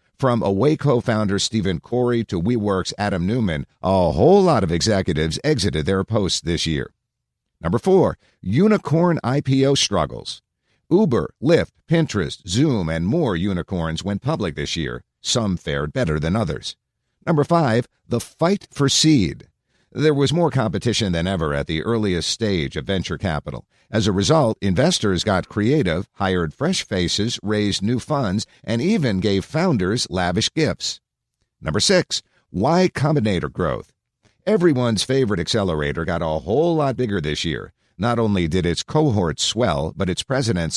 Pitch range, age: 90-140 Hz, 50-69